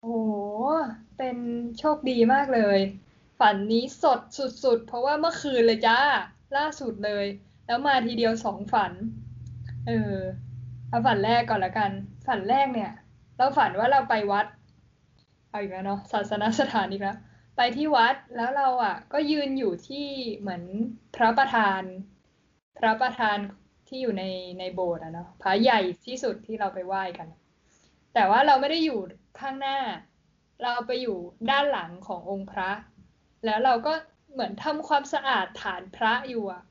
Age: 10-29